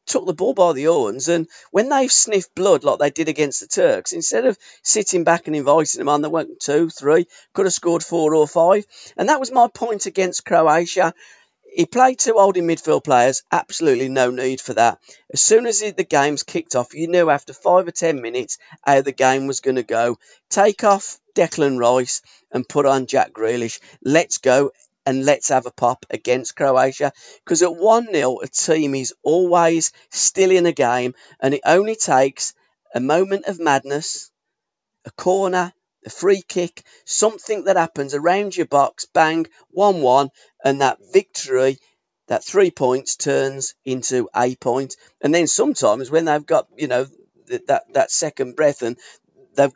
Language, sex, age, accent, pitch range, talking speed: English, male, 40-59, British, 135-195 Hz, 180 wpm